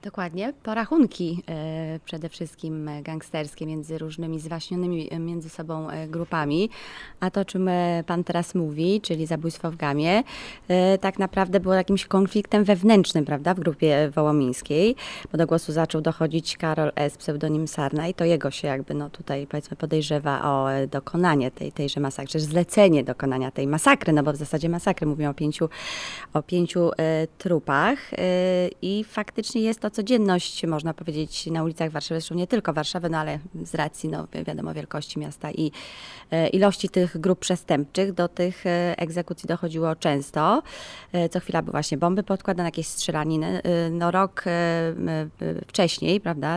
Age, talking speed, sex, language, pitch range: 20-39, 140 wpm, female, Polish, 155-180 Hz